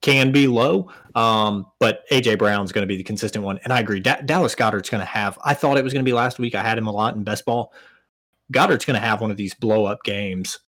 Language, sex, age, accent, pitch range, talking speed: English, male, 20-39, American, 100-120 Hz, 265 wpm